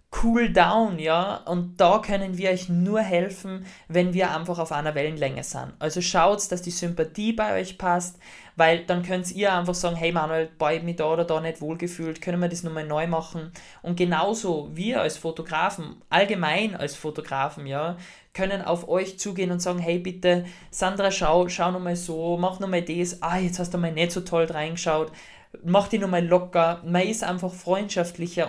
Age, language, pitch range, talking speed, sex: 20-39, German, 155-180 Hz, 185 wpm, male